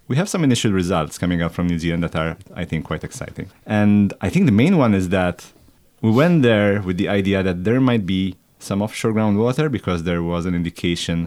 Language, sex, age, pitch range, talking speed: English, male, 30-49, 85-110 Hz, 225 wpm